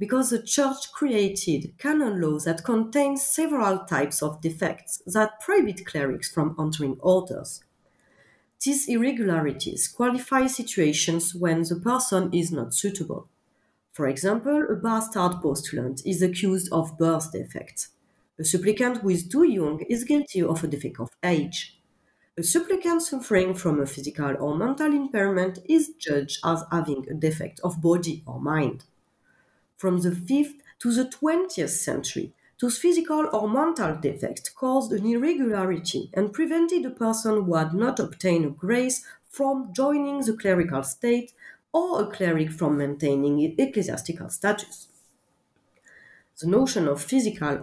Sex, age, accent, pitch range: female, 30-49, French, 160-255 Hz